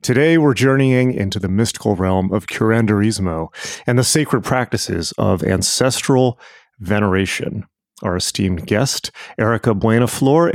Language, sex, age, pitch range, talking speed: English, male, 30-49, 95-120 Hz, 120 wpm